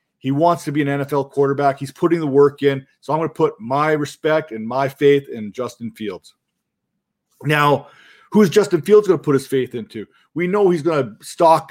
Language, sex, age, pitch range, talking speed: English, male, 40-59, 135-170 Hz, 215 wpm